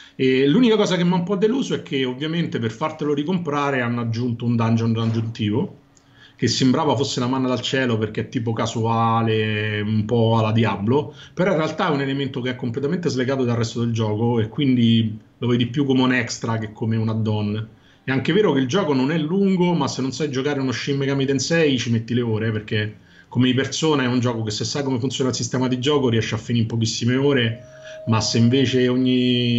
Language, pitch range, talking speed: Italian, 115-140 Hz, 220 wpm